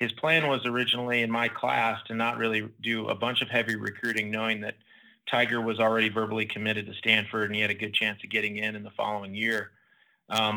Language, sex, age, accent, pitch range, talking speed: English, male, 30-49, American, 105-120 Hz, 220 wpm